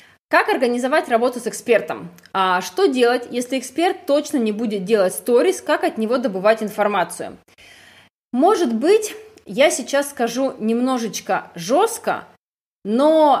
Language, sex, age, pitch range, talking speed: Russian, female, 20-39, 215-290 Hz, 125 wpm